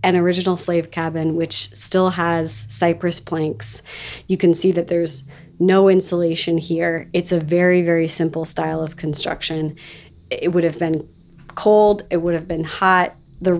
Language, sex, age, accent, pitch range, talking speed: English, female, 30-49, American, 165-195 Hz, 160 wpm